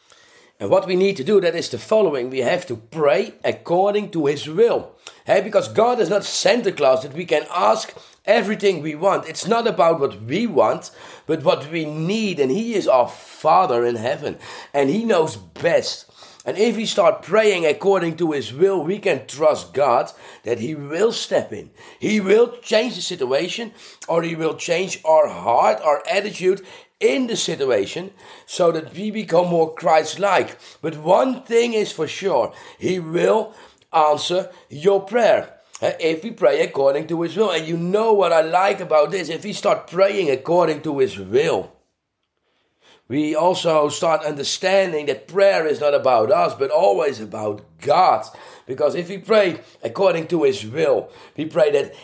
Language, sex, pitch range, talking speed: English, male, 160-230 Hz, 175 wpm